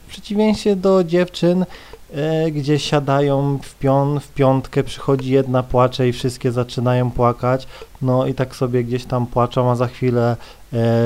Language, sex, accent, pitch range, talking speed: Polish, male, native, 120-150 Hz, 155 wpm